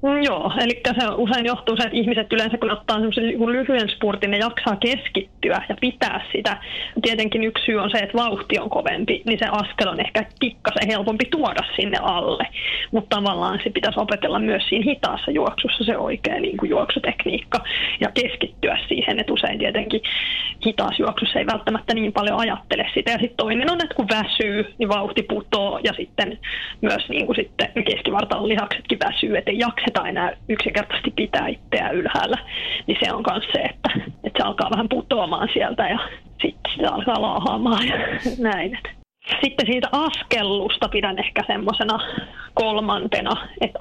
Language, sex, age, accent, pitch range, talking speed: Finnish, female, 20-39, native, 210-245 Hz, 160 wpm